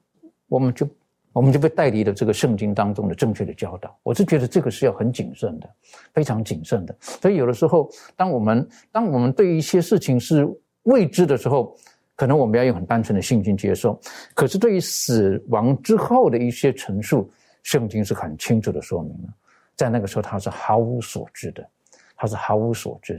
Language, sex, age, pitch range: Chinese, male, 50-69, 105-140 Hz